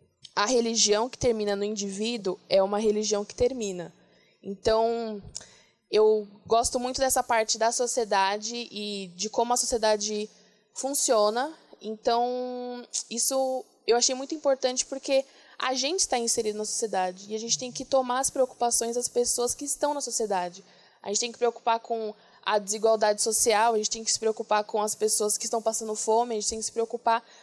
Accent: Brazilian